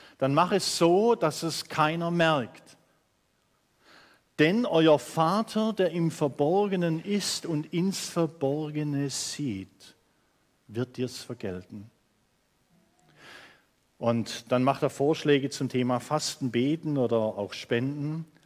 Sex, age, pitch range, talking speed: male, 50-69, 135-185 Hz, 115 wpm